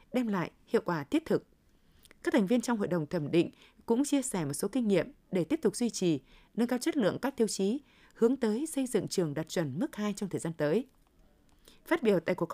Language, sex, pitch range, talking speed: Vietnamese, female, 180-240 Hz, 240 wpm